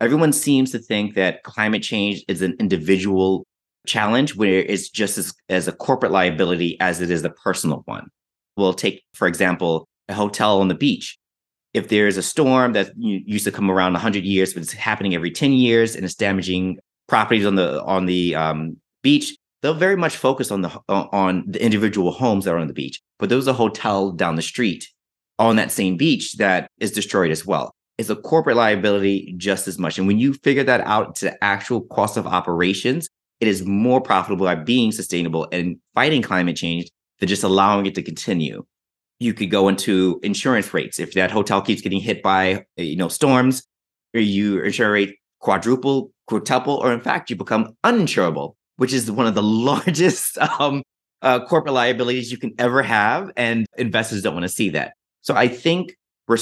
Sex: male